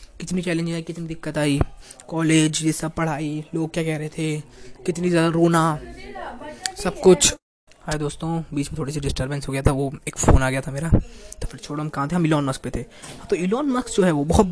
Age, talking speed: 20-39, 230 wpm